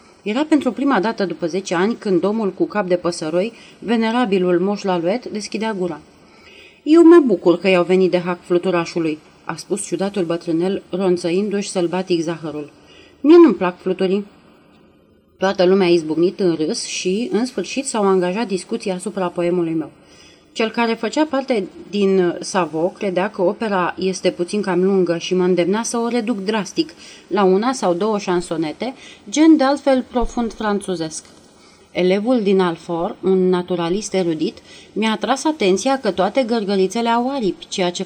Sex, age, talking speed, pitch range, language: female, 30-49, 160 wpm, 180-225 Hz, Romanian